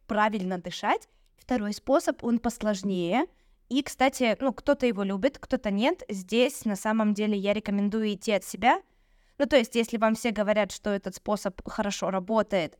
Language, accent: Russian, native